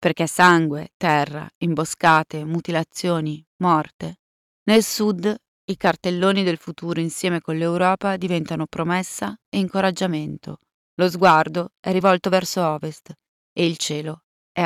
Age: 30-49